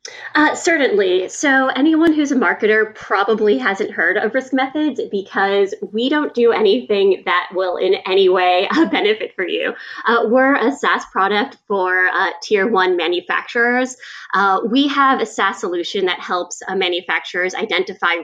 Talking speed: 160 wpm